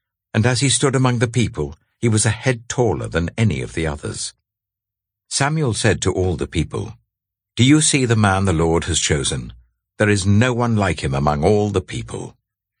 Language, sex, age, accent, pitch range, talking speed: English, male, 60-79, British, 90-115 Hz, 195 wpm